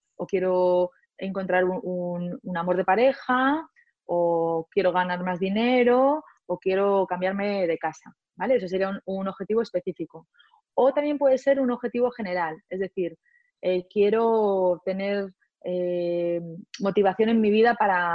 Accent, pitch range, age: Spanish, 185-235 Hz, 20-39